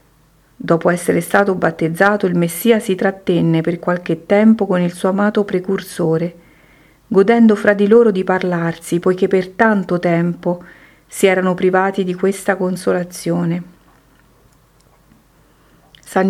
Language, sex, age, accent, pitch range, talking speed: Italian, female, 40-59, native, 170-200 Hz, 120 wpm